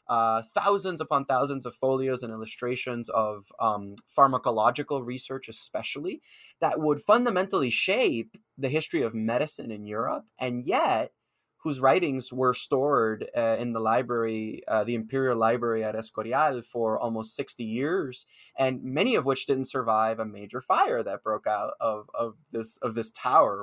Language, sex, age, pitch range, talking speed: English, male, 20-39, 110-135 Hz, 155 wpm